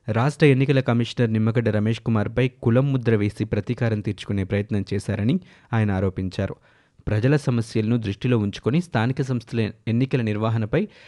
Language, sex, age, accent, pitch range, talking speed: Telugu, male, 20-39, native, 110-130 Hz, 125 wpm